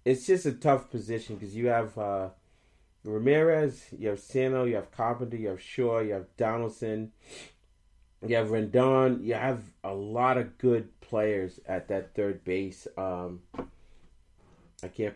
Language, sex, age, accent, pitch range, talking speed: English, male, 30-49, American, 95-125 Hz, 155 wpm